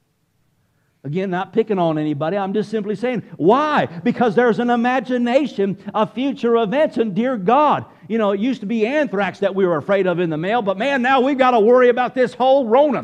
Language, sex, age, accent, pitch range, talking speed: English, male, 50-69, American, 150-230 Hz, 210 wpm